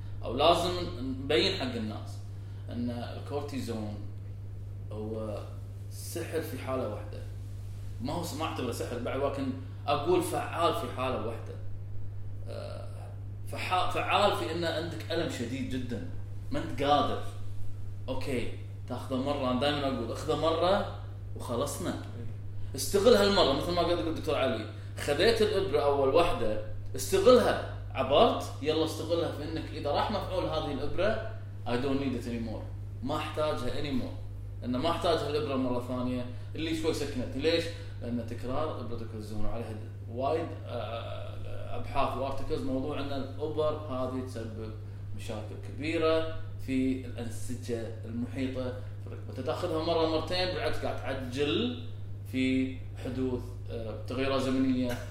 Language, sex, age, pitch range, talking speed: Arabic, male, 20-39, 100-125 Hz, 120 wpm